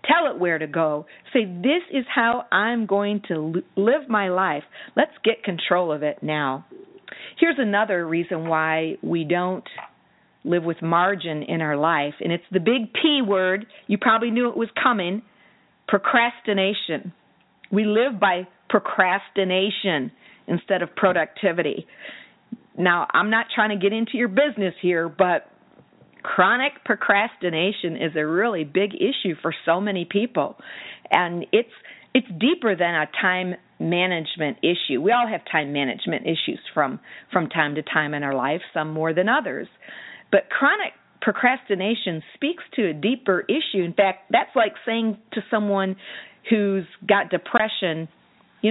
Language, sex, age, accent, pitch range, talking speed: English, female, 50-69, American, 170-225 Hz, 150 wpm